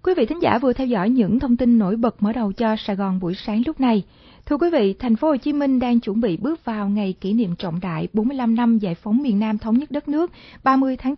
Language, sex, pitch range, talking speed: Vietnamese, female, 210-255 Hz, 275 wpm